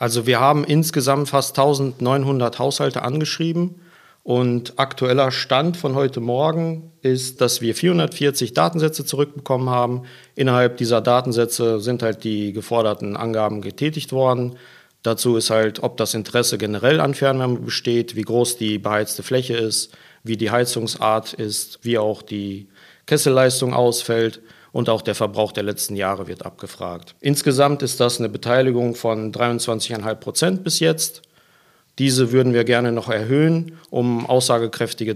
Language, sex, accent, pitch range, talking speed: German, male, German, 115-135 Hz, 140 wpm